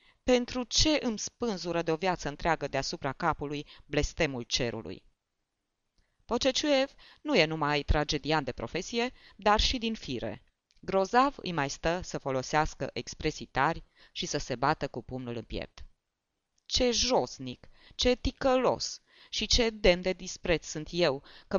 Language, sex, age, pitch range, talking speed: Romanian, female, 20-39, 135-200 Hz, 140 wpm